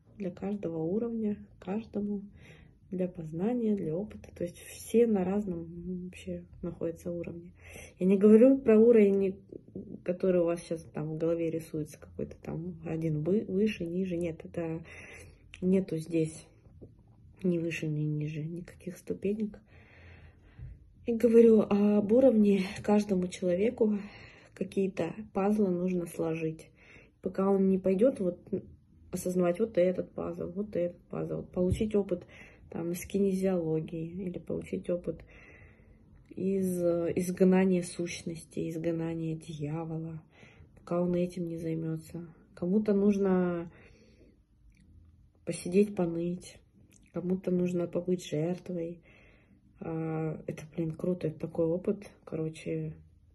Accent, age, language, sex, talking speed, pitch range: native, 20-39, Russian, female, 110 wpm, 150-190 Hz